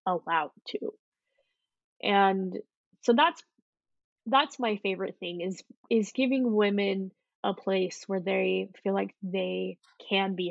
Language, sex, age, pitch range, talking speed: English, female, 20-39, 190-225 Hz, 125 wpm